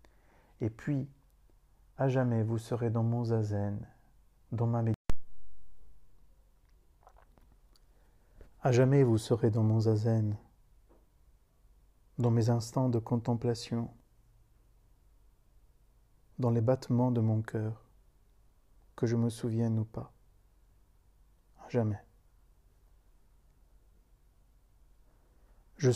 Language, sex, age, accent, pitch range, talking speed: French, male, 50-69, French, 85-120 Hz, 90 wpm